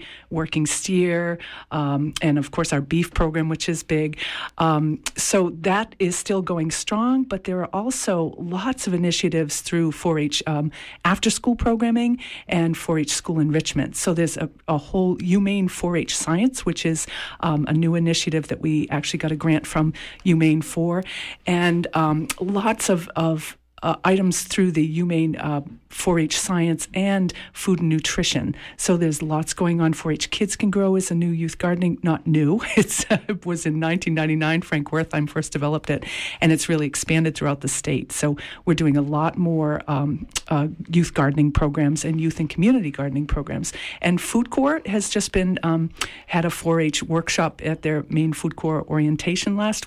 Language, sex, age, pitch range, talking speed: English, female, 50-69, 155-185 Hz, 170 wpm